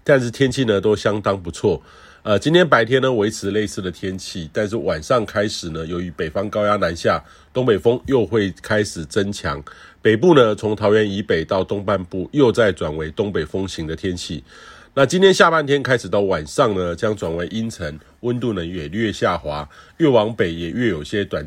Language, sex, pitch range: Chinese, male, 90-115 Hz